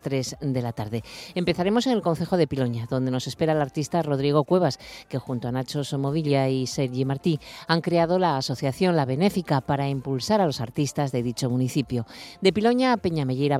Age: 40-59